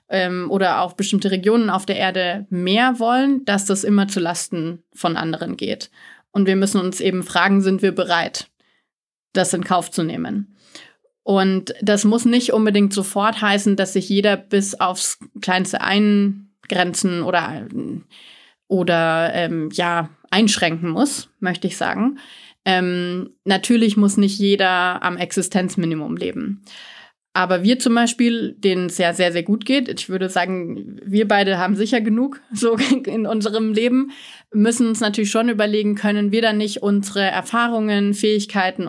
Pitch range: 180-210 Hz